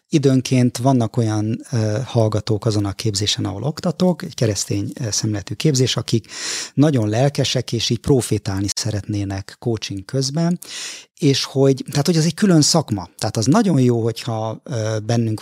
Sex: male